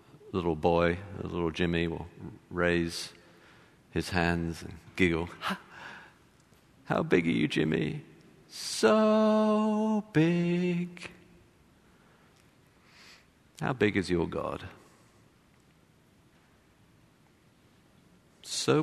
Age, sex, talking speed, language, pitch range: 50-69, male, 75 wpm, English, 85-125 Hz